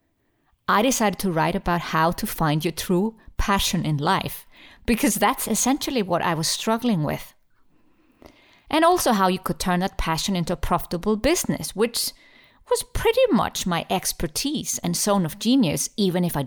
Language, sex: English, female